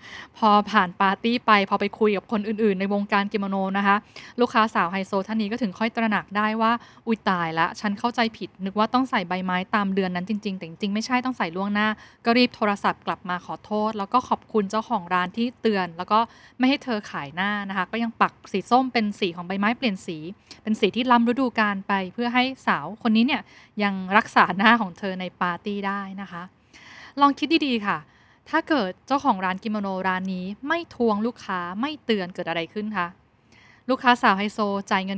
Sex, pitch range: female, 190-230 Hz